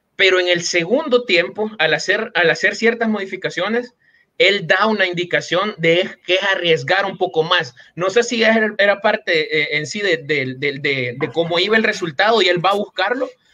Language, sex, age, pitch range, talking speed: Spanish, male, 30-49, 170-220 Hz, 200 wpm